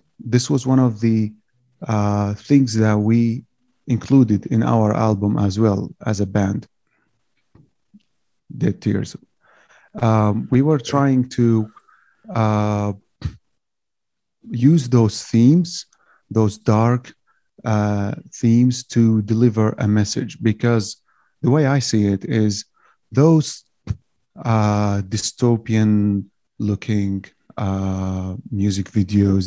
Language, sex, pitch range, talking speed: English, male, 105-120 Hz, 105 wpm